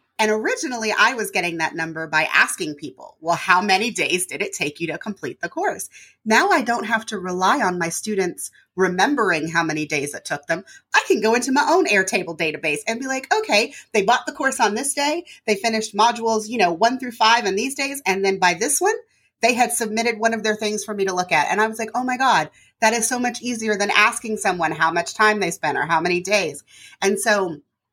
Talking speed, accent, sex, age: 240 wpm, American, female, 30-49